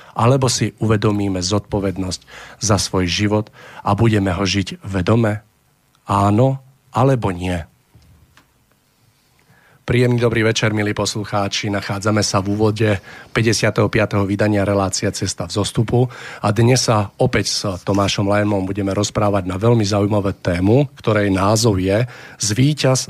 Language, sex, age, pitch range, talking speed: Slovak, male, 40-59, 100-120 Hz, 120 wpm